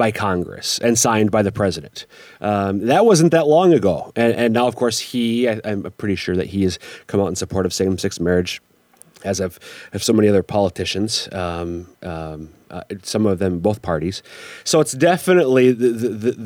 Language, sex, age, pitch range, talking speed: English, male, 30-49, 95-120 Hz, 195 wpm